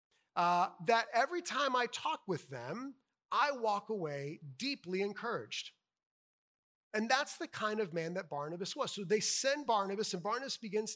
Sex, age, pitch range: male, 30-49, 160-210 Hz